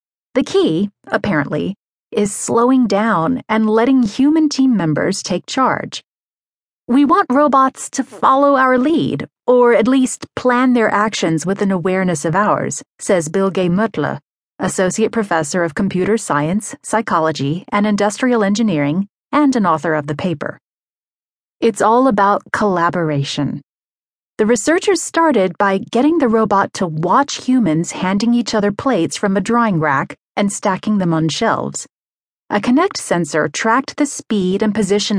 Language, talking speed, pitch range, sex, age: English, 145 wpm, 180-245 Hz, female, 30-49